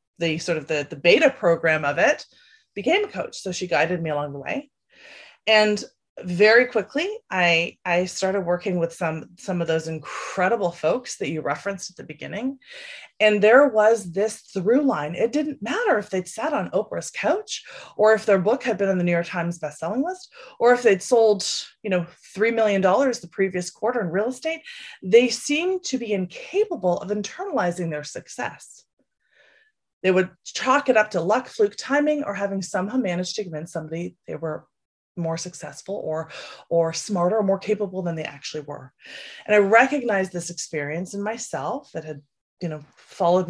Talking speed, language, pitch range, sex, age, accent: 180 wpm, English, 165-230 Hz, female, 30-49, American